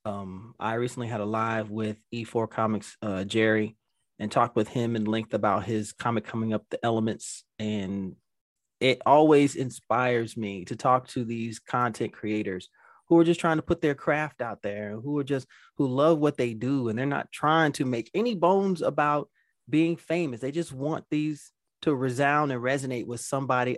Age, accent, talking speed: 30-49, American, 185 wpm